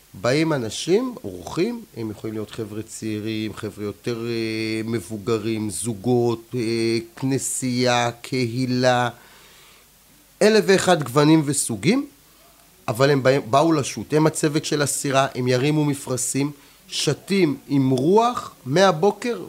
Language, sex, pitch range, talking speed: Hebrew, male, 115-155 Hz, 100 wpm